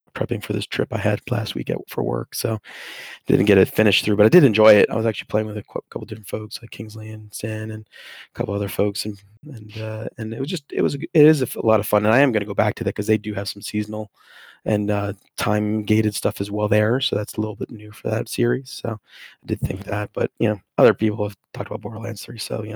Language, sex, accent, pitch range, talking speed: English, male, American, 105-120 Hz, 275 wpm